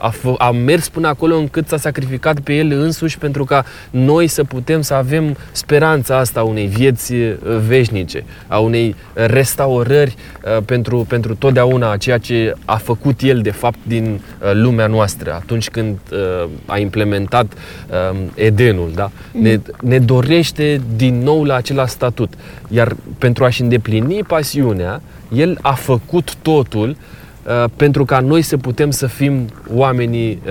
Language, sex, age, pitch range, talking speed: Romanian, male, 20-39, 100-135 Hz, 140 wpm